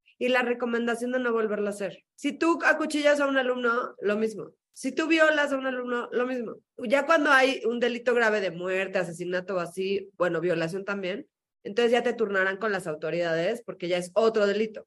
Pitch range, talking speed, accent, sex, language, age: 180-250 Hz, 200 wpm, Mexican, female, Spanish, 30-49